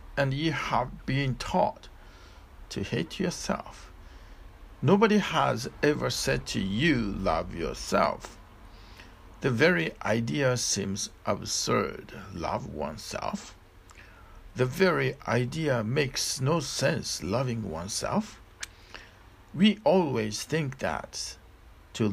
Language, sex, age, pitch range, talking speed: English, male, 60-79, 90-125 Hz, 100 wpm